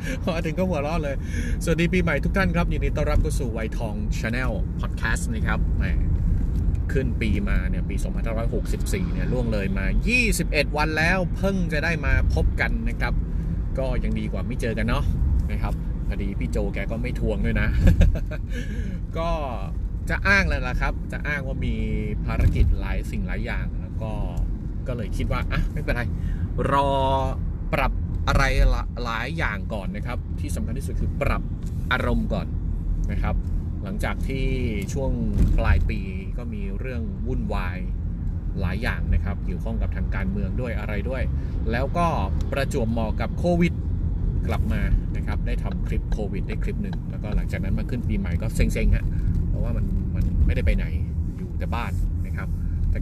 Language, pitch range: Thai, 80-95 Hz